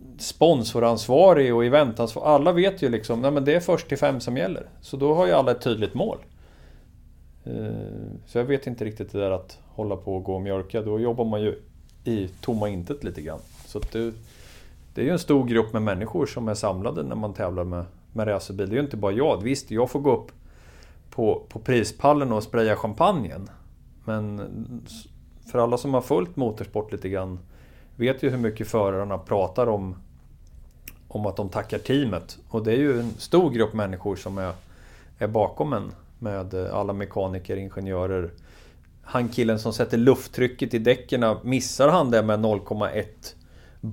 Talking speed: 180 wpm